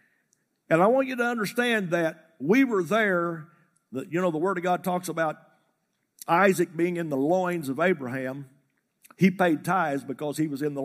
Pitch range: 160-210 Hz